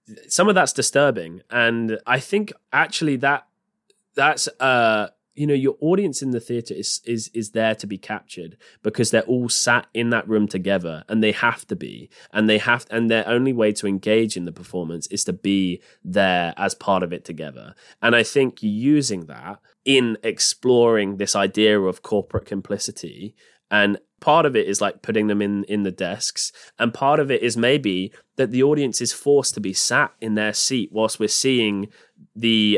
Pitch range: 100-125 Hz